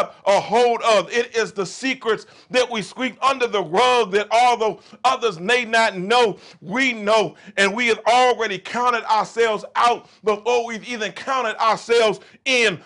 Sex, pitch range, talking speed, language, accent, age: male, 210-250 Hz, 160 wpm, English, American, 40-59